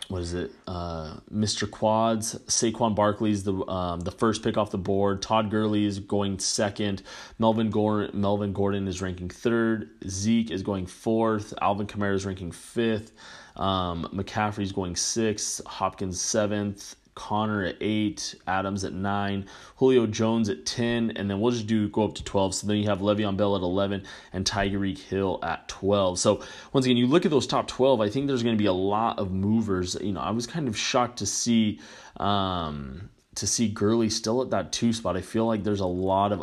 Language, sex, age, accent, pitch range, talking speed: English, male, 20-39, American, 95-110 Hz, 195 wpm